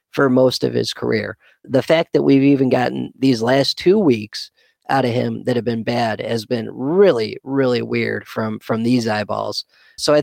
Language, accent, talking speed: English, American, 195 wpm